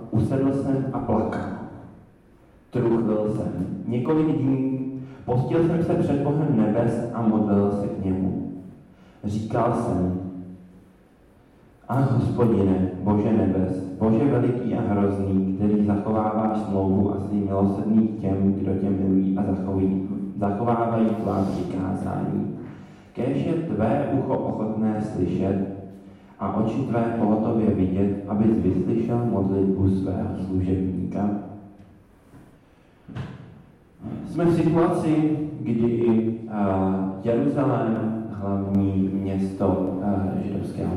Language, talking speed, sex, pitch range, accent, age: Czech, 100 wpm, male, 95-115 Hz, native, 30-49